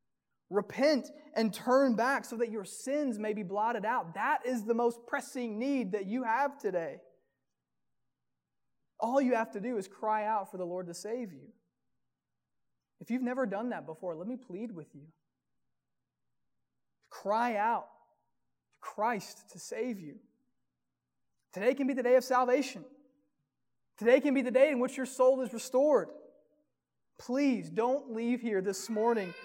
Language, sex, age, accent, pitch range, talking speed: English, male, 20-39, American, 195-255 Hz, 160 wpm